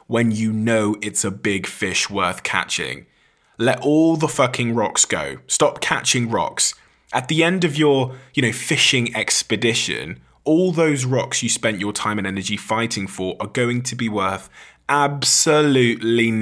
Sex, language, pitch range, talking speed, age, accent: male, English, 105-140 Hz, 160 wpm, 20-39, British